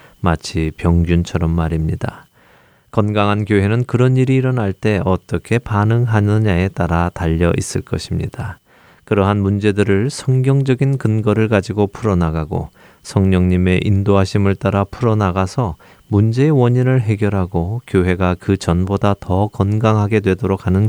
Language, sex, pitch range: Korean, male, 85-110 Hz